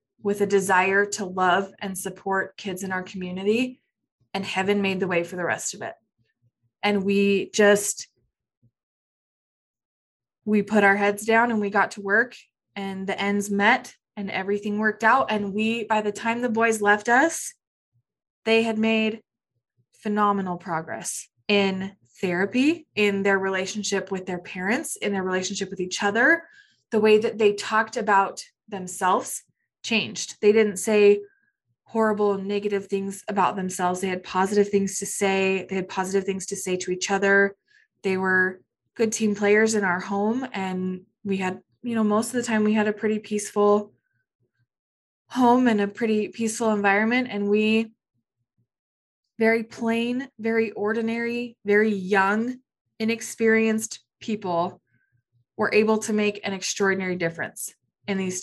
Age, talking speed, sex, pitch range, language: 20-39, 150 wpm, female, 190-220 Hz, English